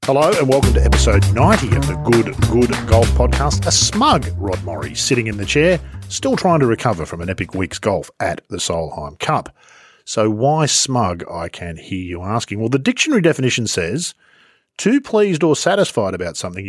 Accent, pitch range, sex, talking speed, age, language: Australian, 90-140 Hz, male, 185 wpm, 40-59, English